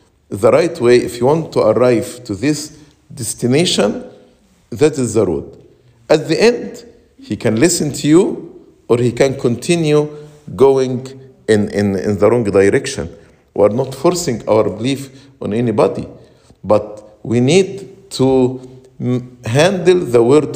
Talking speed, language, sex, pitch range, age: 140 wpm, English, male, 120-175 Hz, 50-69